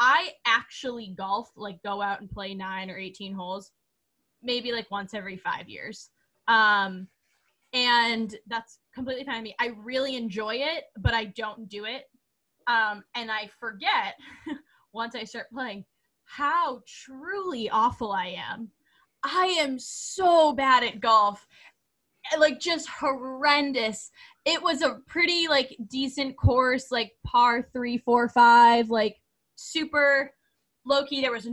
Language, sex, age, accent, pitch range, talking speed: English, female, 10-29, American, 210-280 Hz, 140 wpm